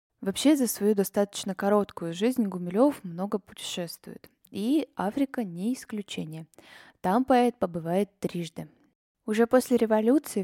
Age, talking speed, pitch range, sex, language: 10-29, 115 wpm, 185-230 Hz, female, Russian